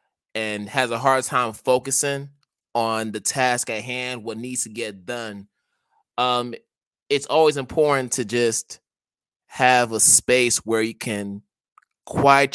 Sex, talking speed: male, 140 wpm